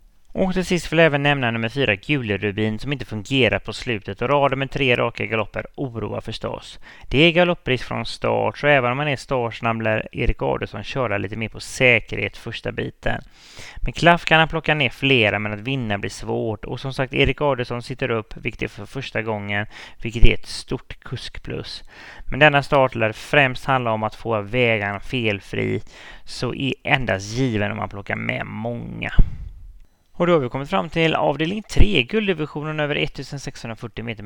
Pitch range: 110-140 Hz